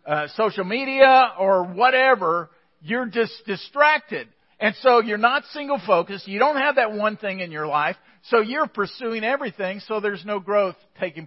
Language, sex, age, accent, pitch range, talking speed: English, male, 50-69, American, 175-235 Hz, 170 wpm